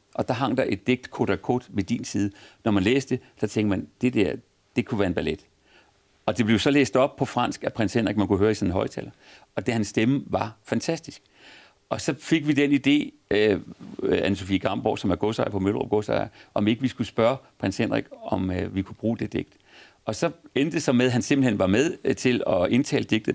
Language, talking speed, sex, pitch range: Danish, 235 wpm, male, 100-130 Hz